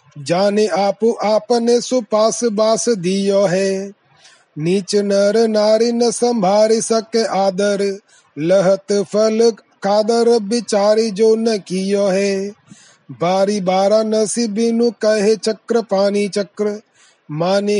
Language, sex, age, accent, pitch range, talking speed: Hindi, male, 30-49, native, 190-225 Hz, 100 wpm